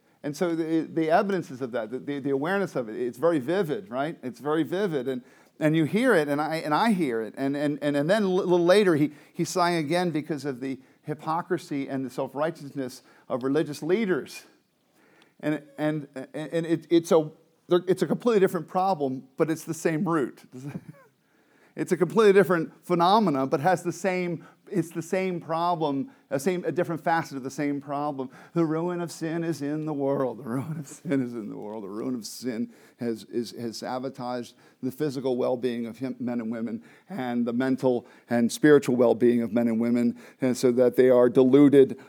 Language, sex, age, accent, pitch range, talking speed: English, male, 40-59, American, 130-175 Hz, 195 wpm